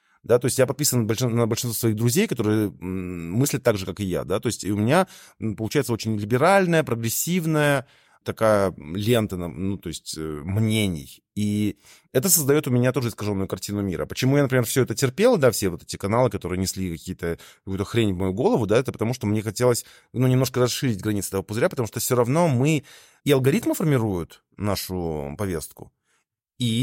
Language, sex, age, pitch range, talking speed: Russian, male, 20-39, 95-130 Hz, 185 wpm